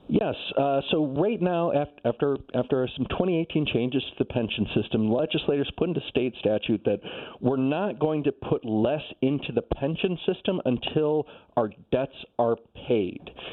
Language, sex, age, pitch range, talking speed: English, male, 40-59, 115-140 Hz, 160 wpm